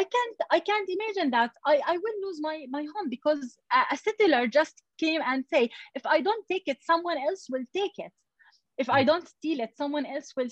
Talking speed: 220 wpm